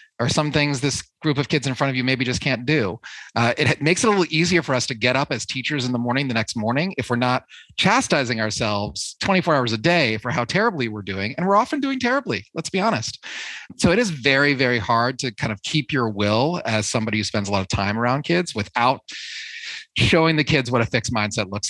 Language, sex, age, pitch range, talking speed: English, male, 30-49, 115-150 Hz, 245 wpm